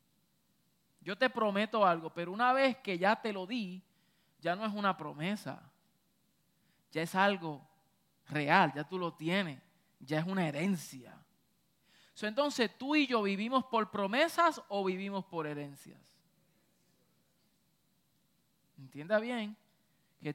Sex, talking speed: male, 125 wpm